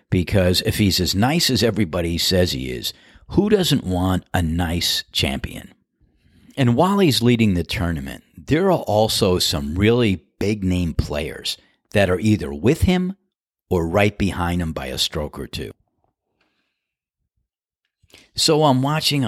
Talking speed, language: 145 wpm, English